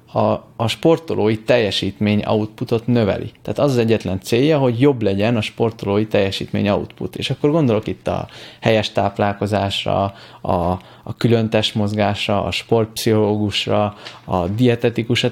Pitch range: 105-130 Hz